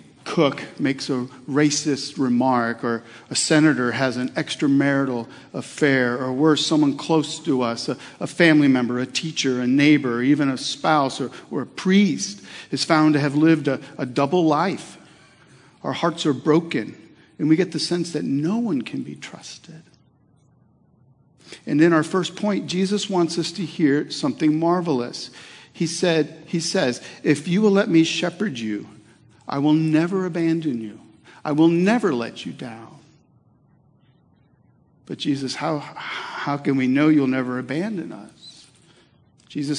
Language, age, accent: English, 50-69, American